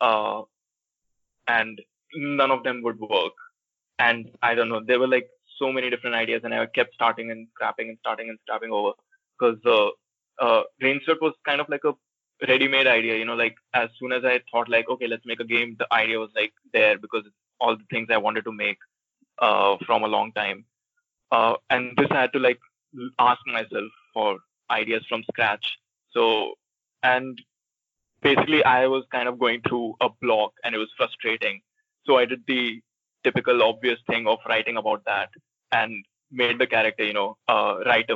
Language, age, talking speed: English, 20-39, 185 wpm